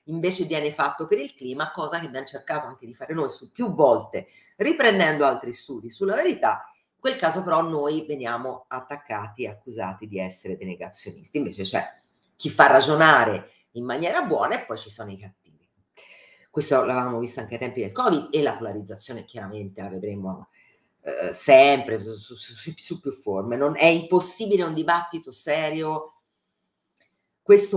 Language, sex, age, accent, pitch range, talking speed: Italian, female, 40-59, native, 125-170 Hz, 165 wpm